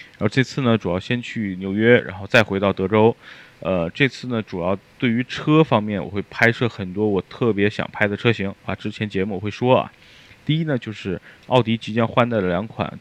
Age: 20-39